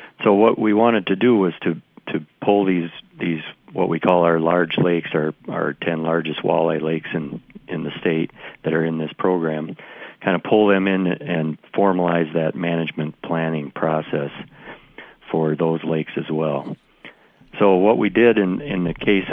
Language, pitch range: English, 80-95 Hz